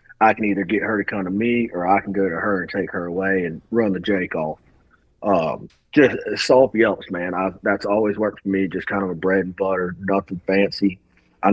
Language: English